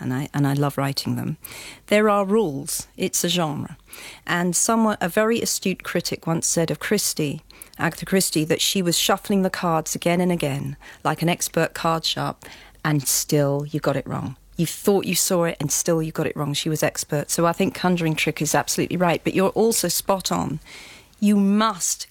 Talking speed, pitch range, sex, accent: 200 wpm, 155-185 Hz, female, British